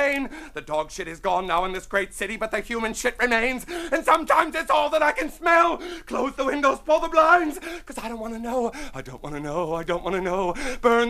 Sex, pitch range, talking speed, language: male, 220-290 Hz, 250 wpm, English